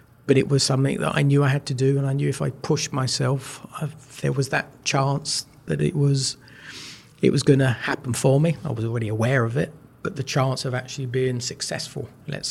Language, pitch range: English, 130-145 Hz